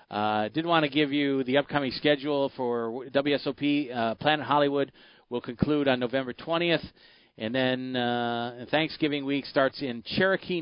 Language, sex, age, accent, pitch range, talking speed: English, male, 40-59, American, 105-145 Hz, 145 wpm